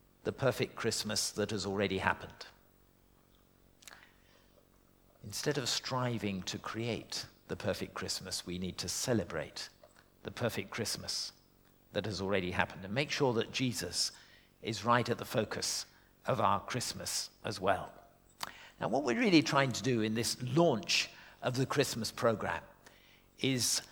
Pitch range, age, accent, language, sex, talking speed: 105-140 Hz, 50-69, British, English, male, 140 wpm